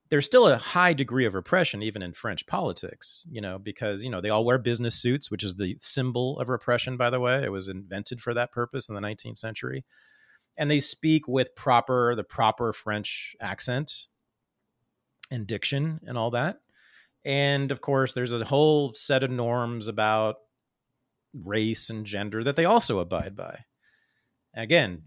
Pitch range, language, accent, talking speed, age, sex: 105-140 Hz, English, American, 175 wpm, 30-49, male